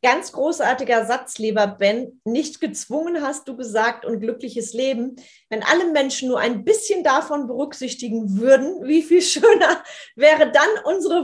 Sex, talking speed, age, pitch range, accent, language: female, 150 wpm, 30-49, 240-315 Hz, German, German